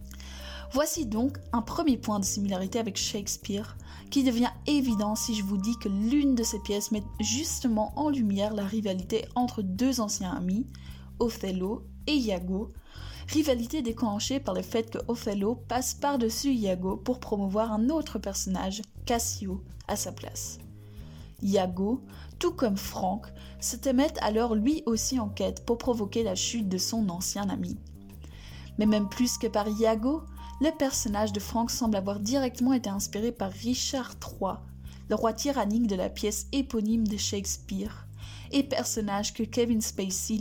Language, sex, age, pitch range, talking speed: French, female, 20-39, 190-240 Hz, 155 wpm